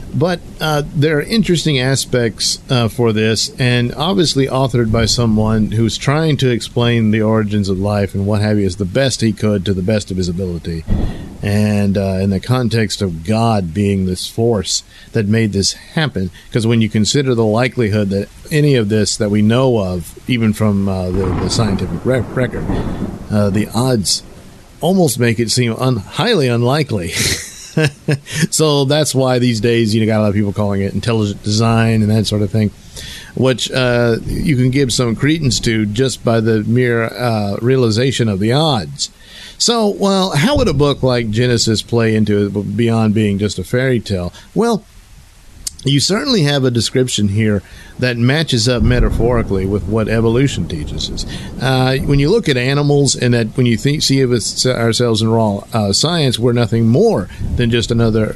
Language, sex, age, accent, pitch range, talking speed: English, male, 50-69, American, 105-130 Hz, 180 wpm